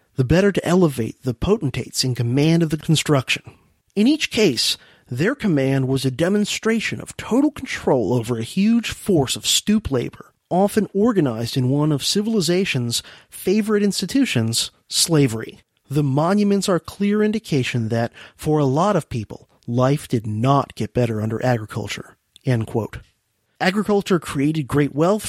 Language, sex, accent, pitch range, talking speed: English, male, American, 130-195 Hz, 145 wpm